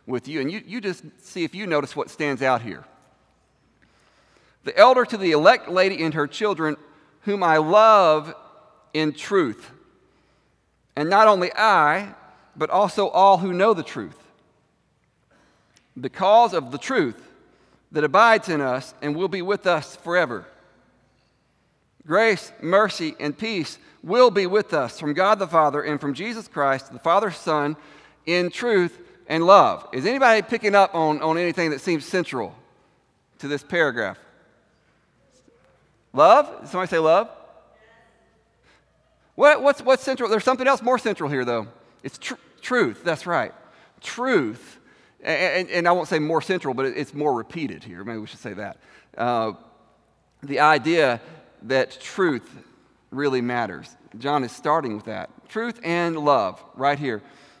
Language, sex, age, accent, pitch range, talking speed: English, male, 40-59, American, 145-210 Hz, 150 wpm